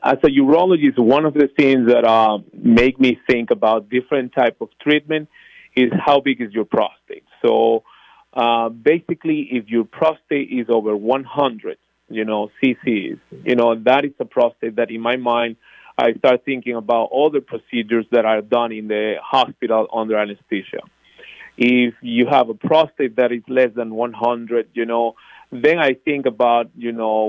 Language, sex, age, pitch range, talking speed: English, male, 40-59, 110-135 Hz, 170 wpm